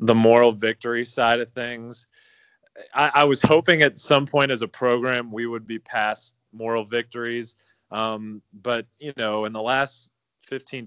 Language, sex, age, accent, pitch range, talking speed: English, male, 30-49, American, 100-120 Hz, 165 wpm